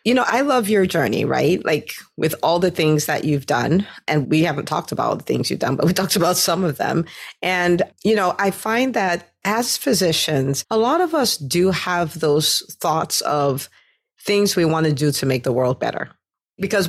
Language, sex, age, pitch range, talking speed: English, female, 40-59, 150-200 Hz, 215 wpm